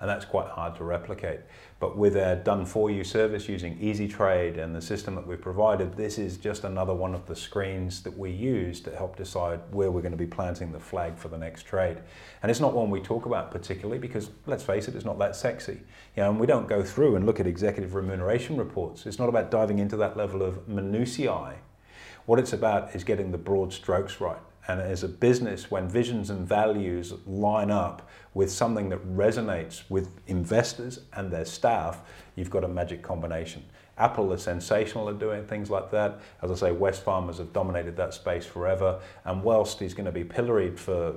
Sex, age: male, 30-49